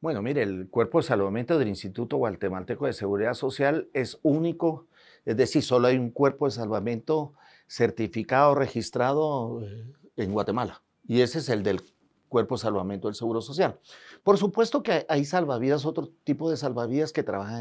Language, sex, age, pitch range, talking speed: Spanish, male, 50-69, 105-140 Hz, 165 wpm